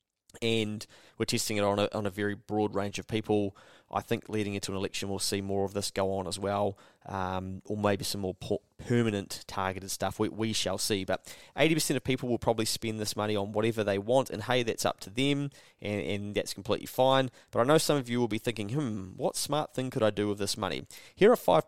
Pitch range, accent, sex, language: 100-130 Hz, Australian, male, English